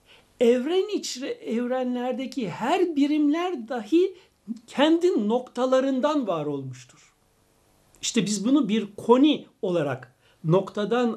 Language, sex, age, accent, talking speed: Turkish, male, 60-79, native, 90 wpm